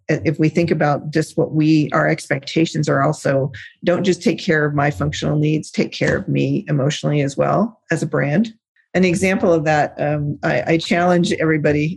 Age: 40-59